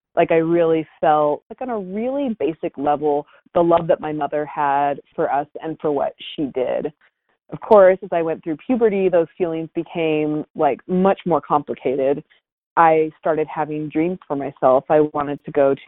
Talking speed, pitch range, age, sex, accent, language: 180 wpm, 150-185 Hz, 30-49, female, American, English